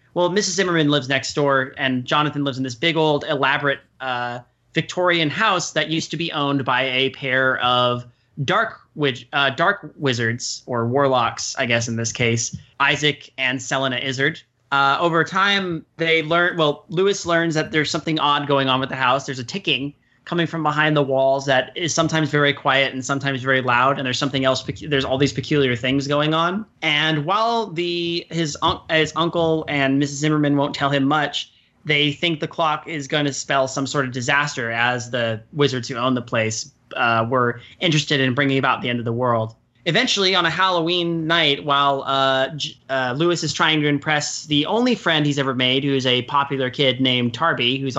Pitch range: 130-160 Hz